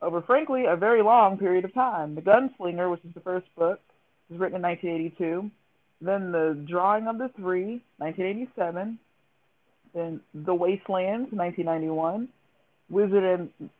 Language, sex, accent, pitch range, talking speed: English, female, American, 170-205 Hz, 130 wpm